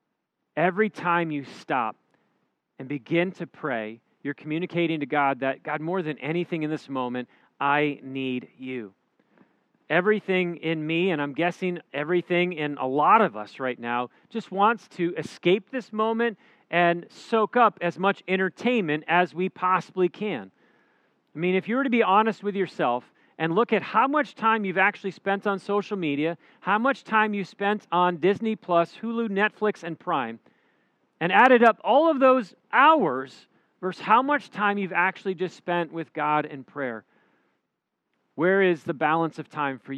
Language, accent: English, American